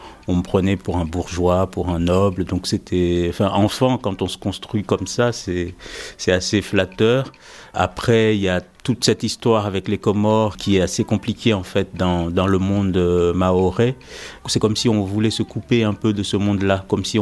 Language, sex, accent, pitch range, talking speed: French, male, French, 95-115 Hz, 200 wpm